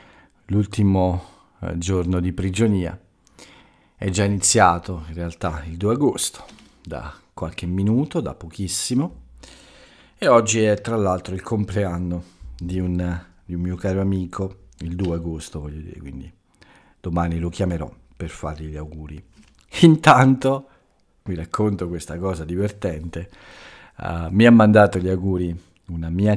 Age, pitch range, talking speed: 50-69, 85-100 Hz, 130 wpm